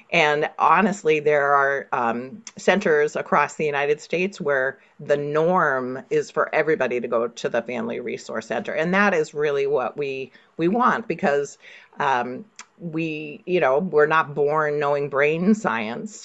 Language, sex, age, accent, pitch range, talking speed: English, female, 40-59, American, 150-225 Hz, 155 wpm